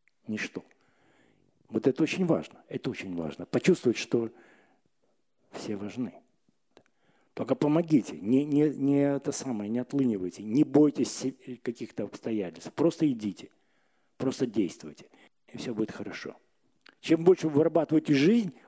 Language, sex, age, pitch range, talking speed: Russian, male, 50-69, 120-165 Hz, 120 wpm